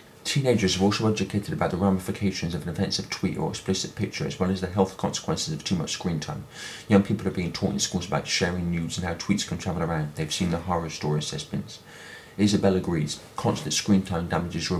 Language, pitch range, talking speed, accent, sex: English, 85-100 Hz, 220 wpm, British, male